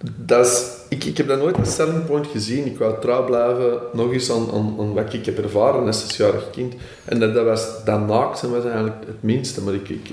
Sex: male